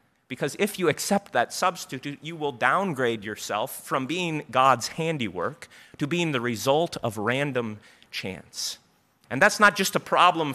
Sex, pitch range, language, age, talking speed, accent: male, 135-180 Hz, English, 30-49, 155 wpm, American